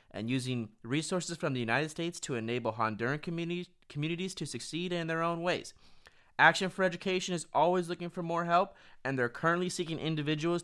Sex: male